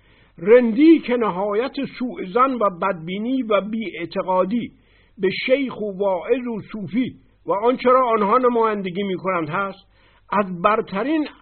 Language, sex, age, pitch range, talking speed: Persian, male, 60-79, 165-230 Hz, 125 wpm